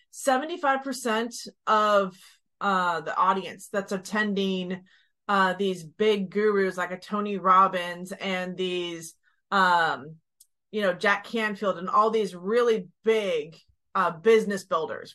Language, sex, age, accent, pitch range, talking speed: English, female, 30-49, American, 185-225 Hz, 115 wpm